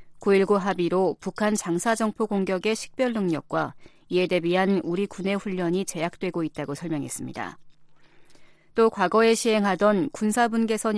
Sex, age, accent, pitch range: female, 40-59, native, 175-215 Hz